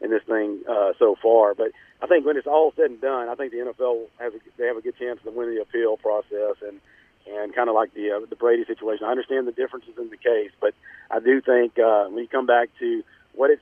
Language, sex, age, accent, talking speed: English, male, 40-59, American, 265 wpm